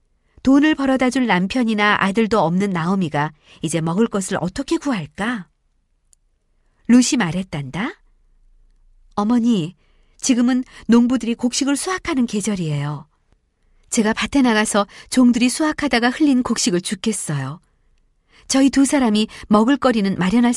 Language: Korean